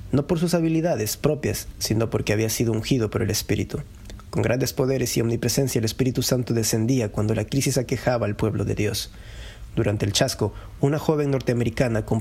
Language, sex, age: Spanish, male, 30-49